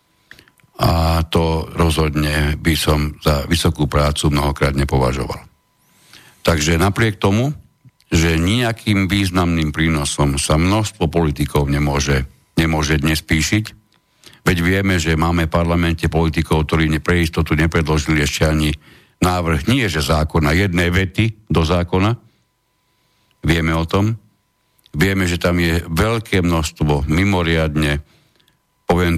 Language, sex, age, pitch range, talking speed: Slovak, male, 60-79, 75-90 Hz, 115 wpm